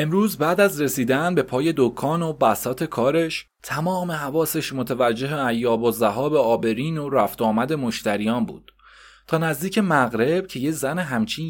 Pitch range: 125-175 Hz